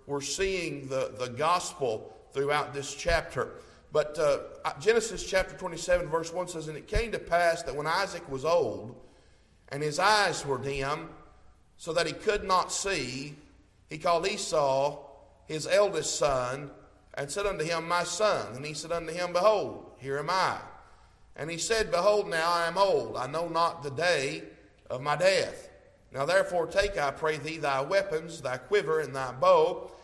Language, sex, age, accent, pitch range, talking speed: English, male, 50-69, American, 145-200 Hz, 175 wpm